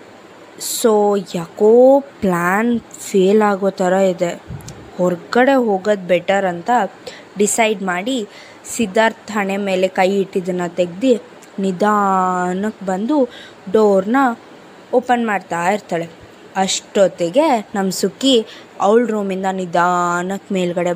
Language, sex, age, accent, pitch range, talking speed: Kannada, female, 20-39, native, 190-240 Hz, 90 wpm